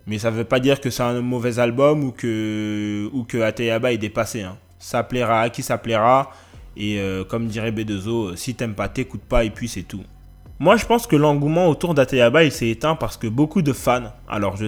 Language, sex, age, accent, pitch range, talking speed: French, male, 20-39, French, 110-140 Hz, 225 wpm